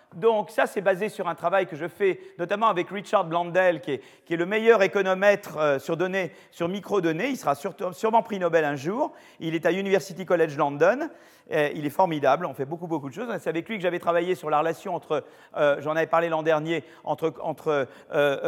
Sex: male